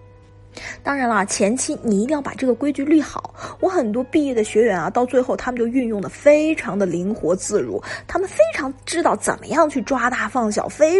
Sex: female